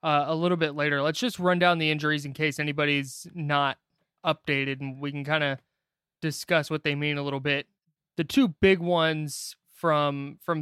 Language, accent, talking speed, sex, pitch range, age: English, American, 190 wpm, male, 135-160 Hz, 20-39